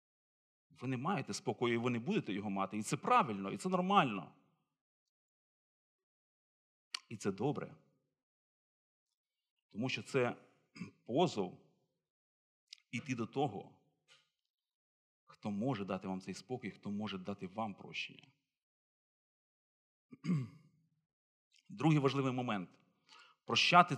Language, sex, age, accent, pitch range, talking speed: Ukrainian, male, 40-59, native, 125-170 Hz, 105 wpm